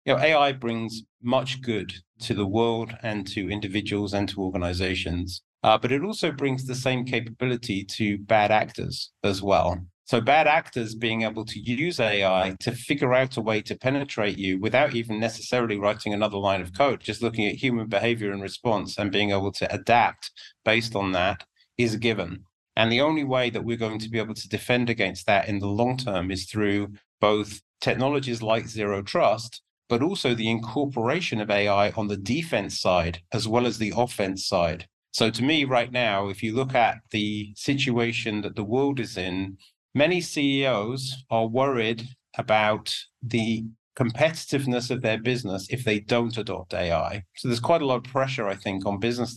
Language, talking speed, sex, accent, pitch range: English, 185 wpm, male, British, 100-125 Hz